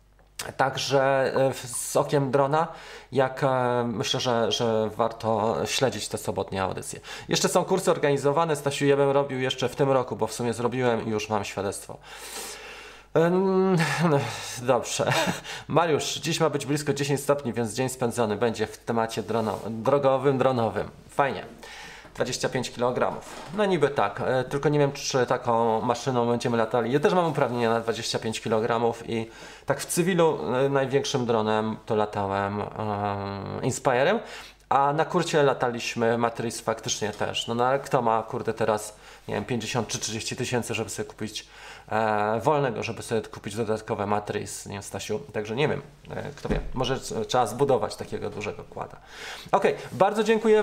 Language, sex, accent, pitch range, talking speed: Polish, male, native, 115-160 Hz, 150 wpm